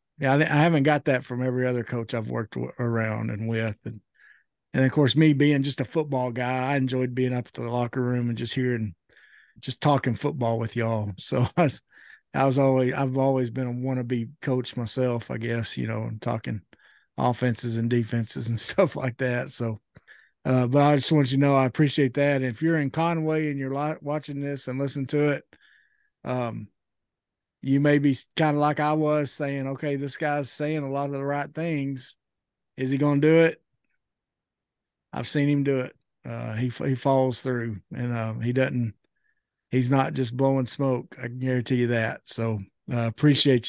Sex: male